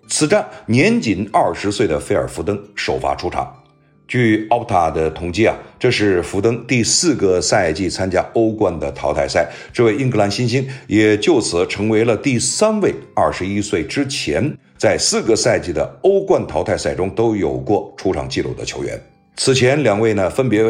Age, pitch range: 50-69, 95-135 Hz